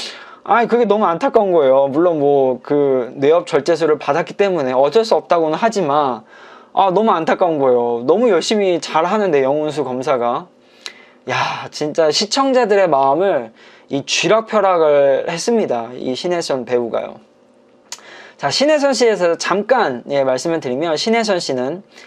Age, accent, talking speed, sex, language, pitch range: 20-39, Korean, 120 wpm, male, English, 145-220 Hz